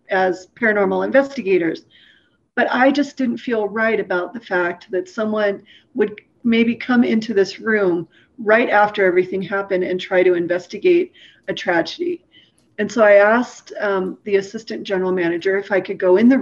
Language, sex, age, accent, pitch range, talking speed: English, female, 40-59, American, 185-240 Hz, 165 wpm